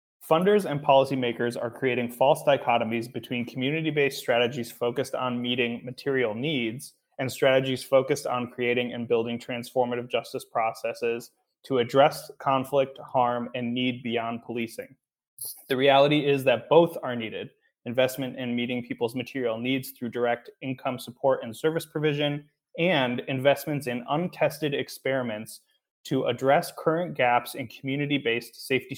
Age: 20-39